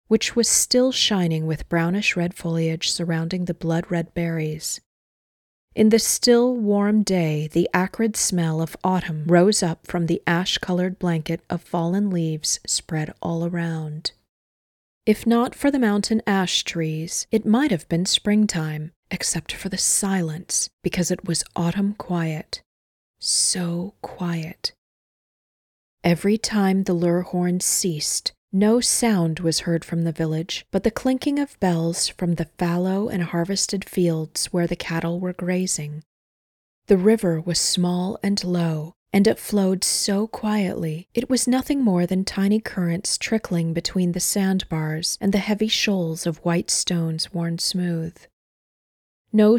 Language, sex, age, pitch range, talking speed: English, female, 30-49, 165-200 Hz, 140 wpm